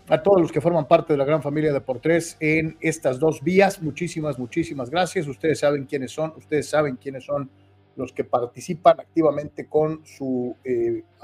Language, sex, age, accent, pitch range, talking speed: Spanish, male, 40-59, Mexican, 135-180 Hz, 180 wpm